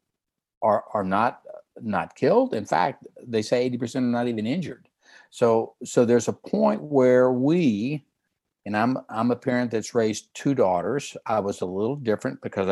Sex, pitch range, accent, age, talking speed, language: male, 105-135 Hz, American, 60-79, 170 wpm, English